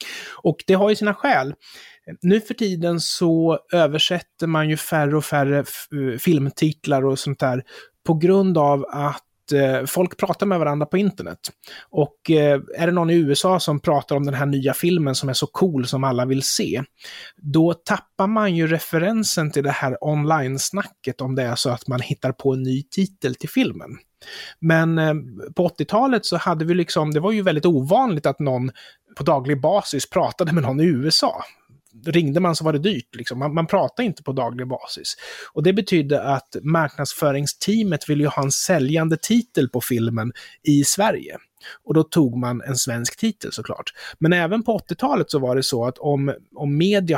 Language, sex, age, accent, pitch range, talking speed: Swedish, male, 30-49, native, 135-170 Hz, 185 wpm